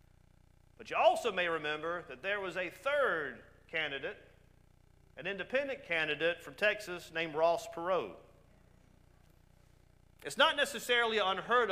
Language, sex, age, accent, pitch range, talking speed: English, male, 40-59, American, 140-195 Hz, 120 wpm